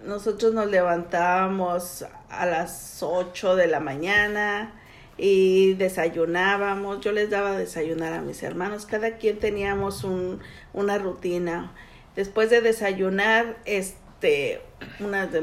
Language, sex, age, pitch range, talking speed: English, female, 50-69, 180-220 Hz, 115 wpm